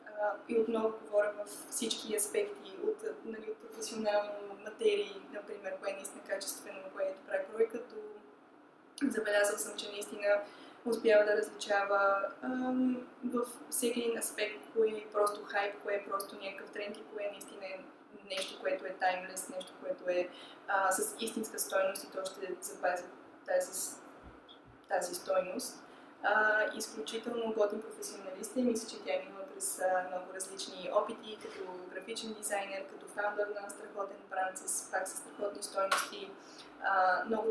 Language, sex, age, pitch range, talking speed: Bulgarian, female, 20-39, 195-235 Hz, 140 wpm